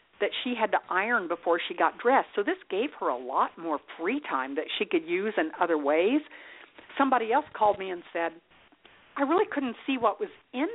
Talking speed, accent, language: 210 wpm, American, English